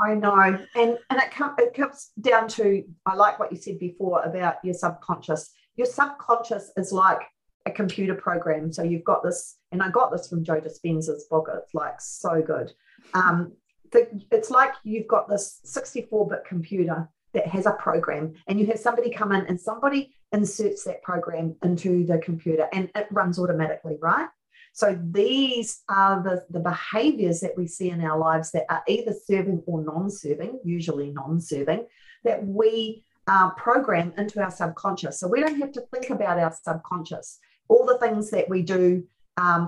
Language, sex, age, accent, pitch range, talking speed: English, female, 40-59, Australian, 170-220 Hz, 175 wpm